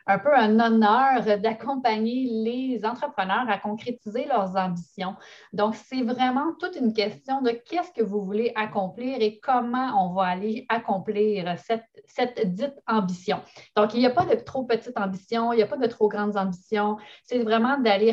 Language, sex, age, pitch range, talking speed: French, female, 30-49, 195-235 Hz, 175 wpm